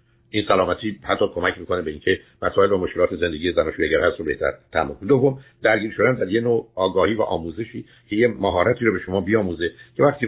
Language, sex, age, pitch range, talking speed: Persian, male, 60-79, 105-140 Hz, 195 wpm